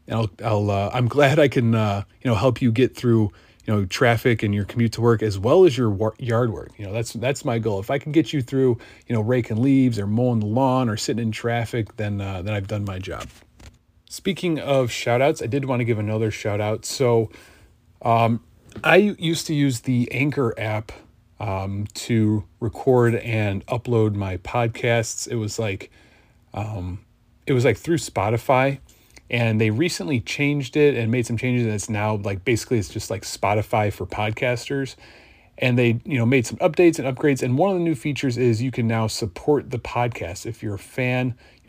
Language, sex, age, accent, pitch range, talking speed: English, male, 30-49, American, 105-130 Hz, 205 wpm